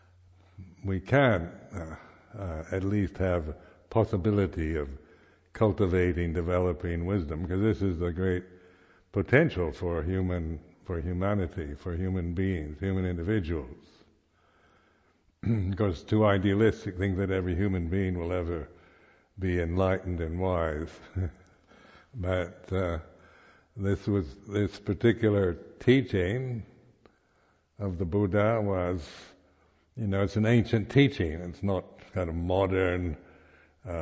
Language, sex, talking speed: English, male, 115 wpm